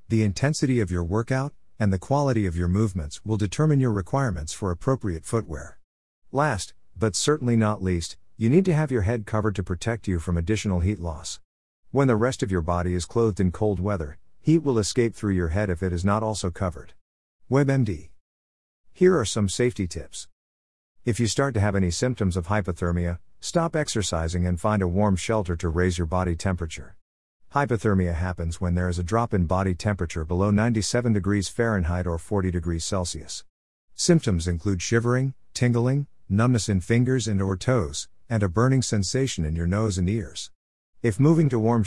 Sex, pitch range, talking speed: male, 90-125 Hz, 185 wpm